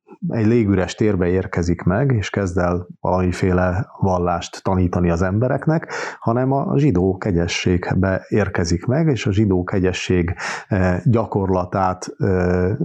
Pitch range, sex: 95-120 Hz, male